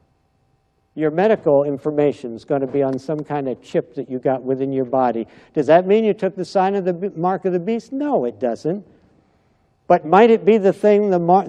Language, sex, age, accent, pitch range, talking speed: English, male, 60-79, American, 135-185 Hz, 225 wpm